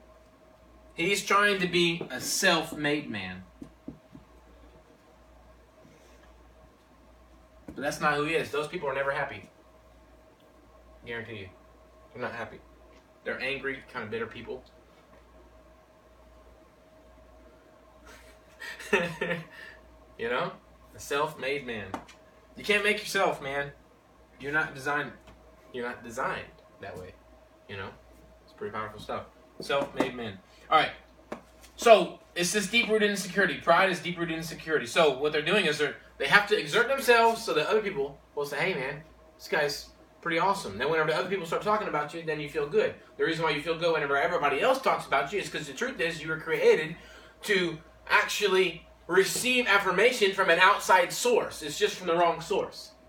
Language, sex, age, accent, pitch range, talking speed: English, male, 20-39, American, 145-205 Hz, 160 wpm